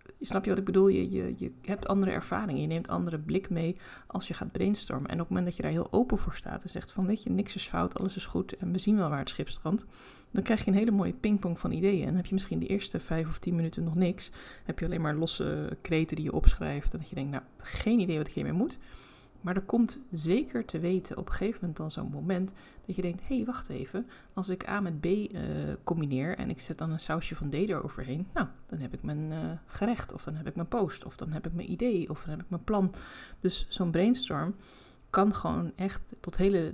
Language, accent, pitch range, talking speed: Dutch, Dutch, 155-195 Hz, 260 wpm